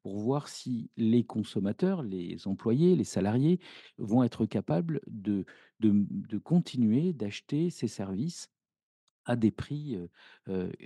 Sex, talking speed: male, 135 wpm